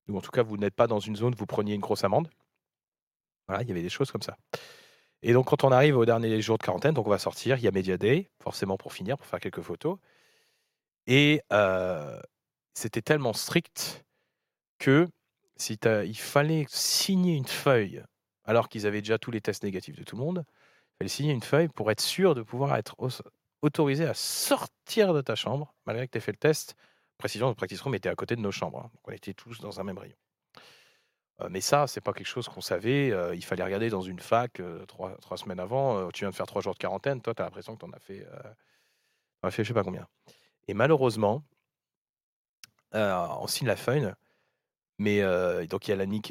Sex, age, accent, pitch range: male, 40-59, French, 105-145 Hz